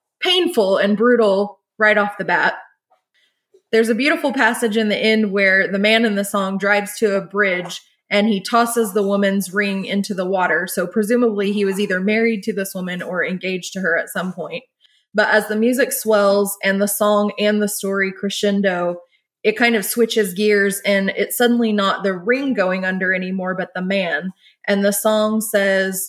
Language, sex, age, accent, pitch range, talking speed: English, female, 20-39, American, 190-215 Hz, 190 wpm